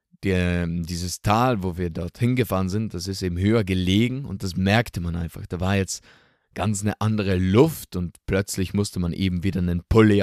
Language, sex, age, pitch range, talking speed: German, male, 20-39, 90-110 Hz, 190 wpm